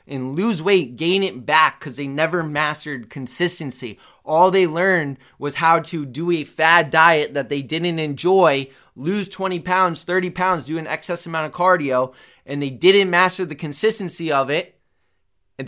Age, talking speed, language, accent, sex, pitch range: 20-39, 170 wpm, English, American, male, 140-175 Hz